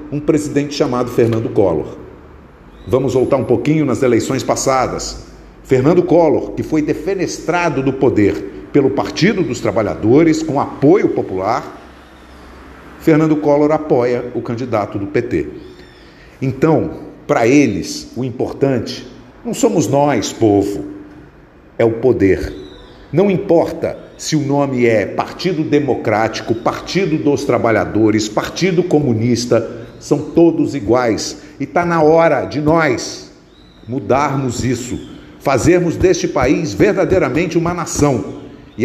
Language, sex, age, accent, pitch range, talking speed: Portuguese, male, 50-69, Brazilian, 105-150 Hz, 115 wpm